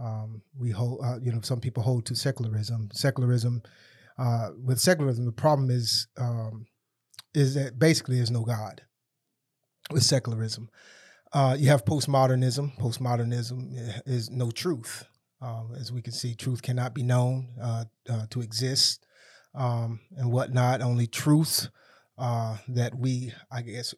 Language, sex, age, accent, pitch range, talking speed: English, male, 30-49, American, 115-135 Hz, 145 wpm